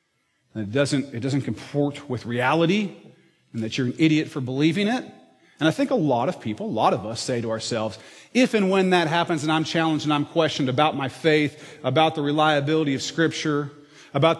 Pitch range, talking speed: 125-155 Hz, 205 wpm